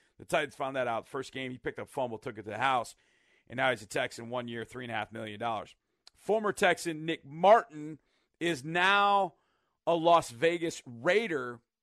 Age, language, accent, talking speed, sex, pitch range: 40-59, English, American, 185 wpm, male, 135-175 Hz